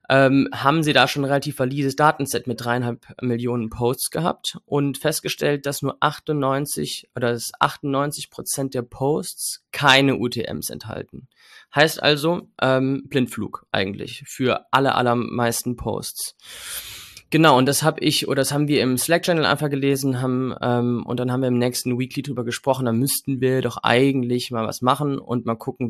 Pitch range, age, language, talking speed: 120-145 Hz, 20-39, German, 165 wpm